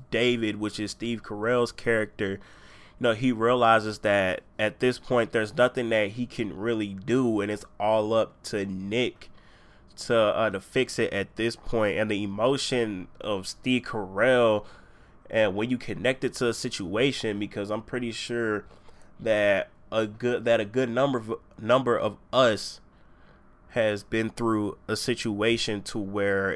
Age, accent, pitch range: 20-39, American, 100-115 Hz